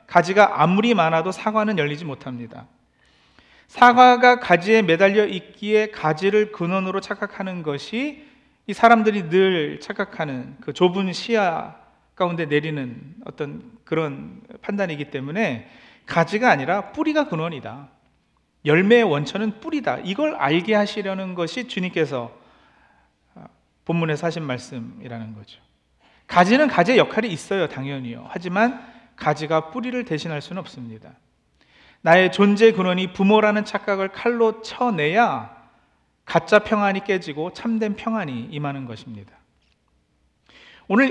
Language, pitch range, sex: Korean, 150-225 Hz, male